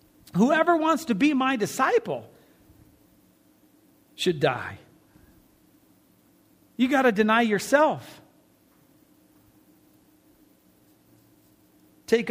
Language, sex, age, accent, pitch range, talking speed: English, male, 40-59, American, 180-260 Hz, 70 wpm